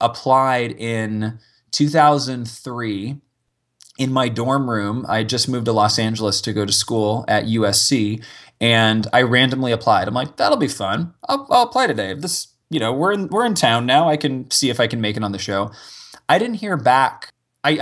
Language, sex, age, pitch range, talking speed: English, male, 20-39, 110-145 Hz, 190 wpm